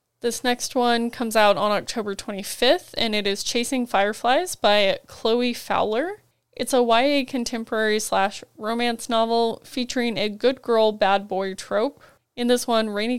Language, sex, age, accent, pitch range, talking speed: English, female, 10-29, American, 200-240 Hz, 160 wpm